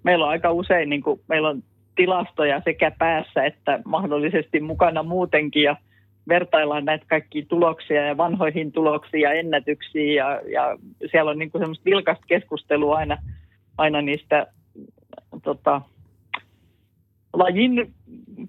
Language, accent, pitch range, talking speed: Finnish, native, 145-175 Hz, 120 wpm